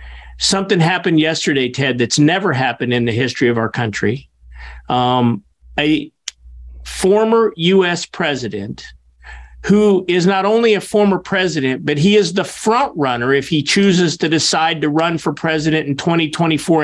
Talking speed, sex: 150 wpm, male